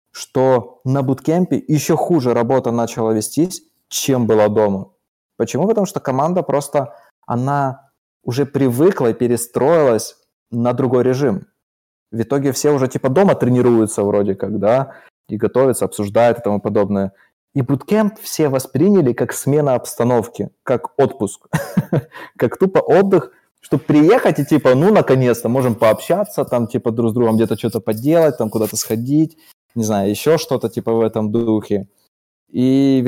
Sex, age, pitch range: male, 20-39, 110-135 Hz